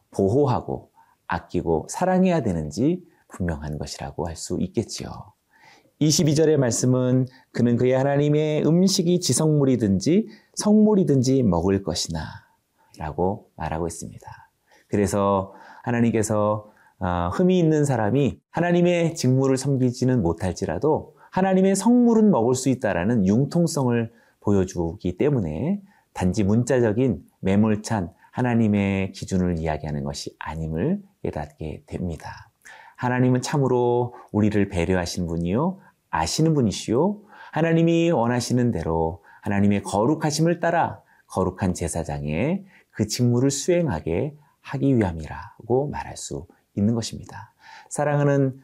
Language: Korean